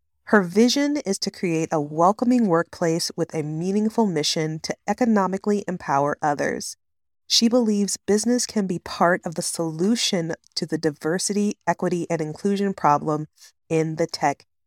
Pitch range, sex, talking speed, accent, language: 160-200 Hz, female, 145 wpm, American, English